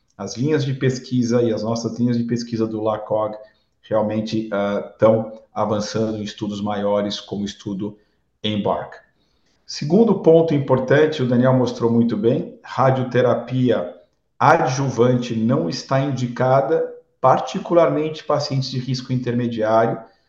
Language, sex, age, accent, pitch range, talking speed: Portuguese, male, 50-69, Brazilian, 110-135 Hz, 120 wpm